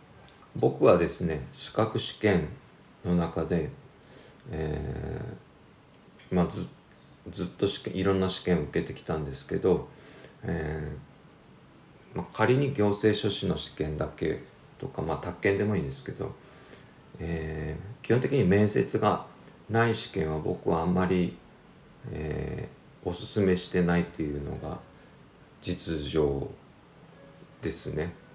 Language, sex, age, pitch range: Japanese, male, 50-69, 80-110 Hz